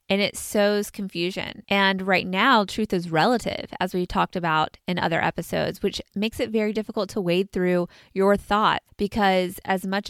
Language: English